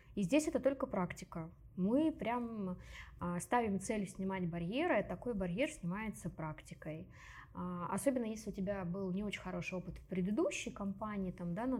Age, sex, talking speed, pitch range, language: 20-39, female, 145 wpm, 180-230 Hz, Russian